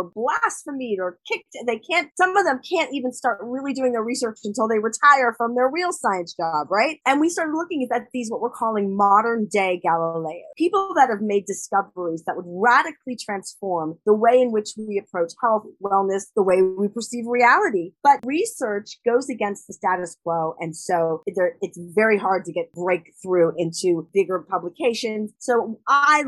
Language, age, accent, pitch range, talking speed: English, 30-49, American, 180-255 Hz, 180 wpm